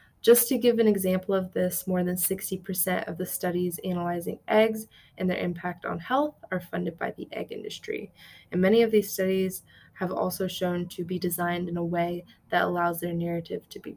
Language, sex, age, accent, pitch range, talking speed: English, female, 20-39, American, 180-195 Hz, 200 wpm